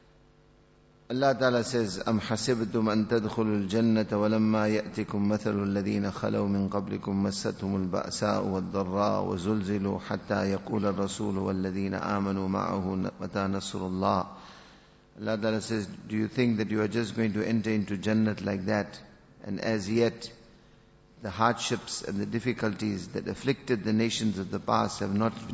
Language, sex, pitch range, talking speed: English, male, 105-120 Hz, 90 wpm